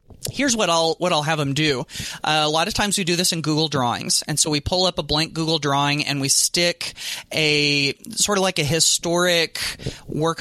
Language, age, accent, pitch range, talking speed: English, 30-49, American, 140-170 Hz, 220 wpm